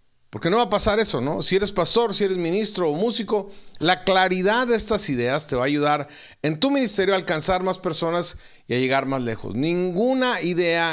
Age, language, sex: 40-59, Spanish, male